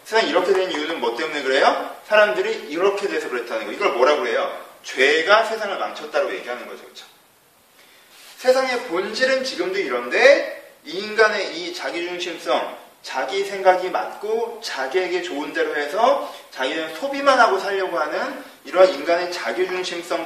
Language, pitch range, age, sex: Korean, 180-260 Hz, 30-49, male